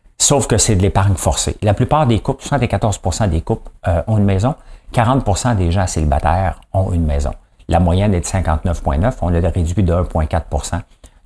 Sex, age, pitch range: male, 50-69, 85-110 Hz